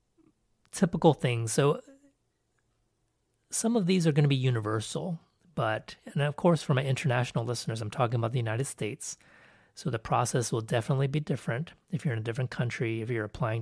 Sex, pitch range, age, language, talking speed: male, 110-160 Hz, 30-49, English, 180 wpm